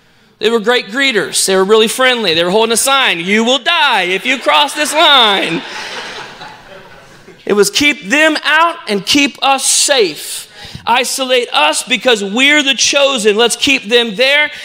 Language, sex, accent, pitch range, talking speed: English, male, American, 230-290 Hz, 165 wpm